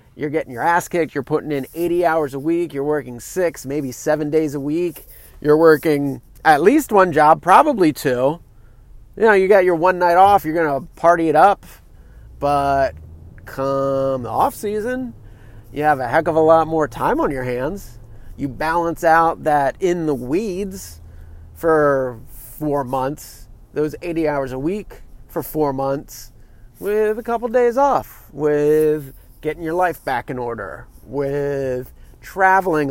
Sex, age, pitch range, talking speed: male, 30-49, 130-175 Hz, 165 wpm